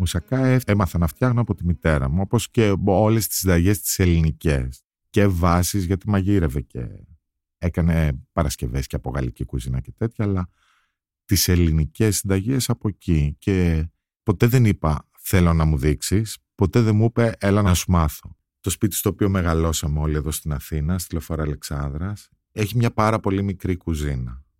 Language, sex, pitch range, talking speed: Greek, male, 75-105 Hz, 165 wpm